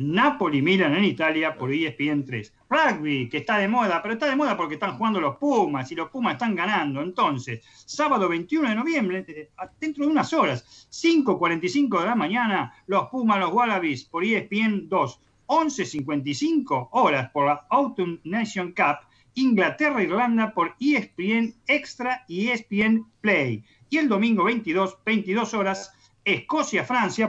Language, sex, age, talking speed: Spanish, male, 40-59, 145 wpm